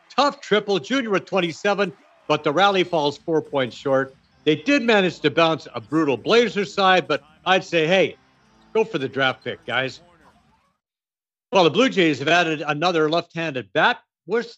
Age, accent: 60-79, American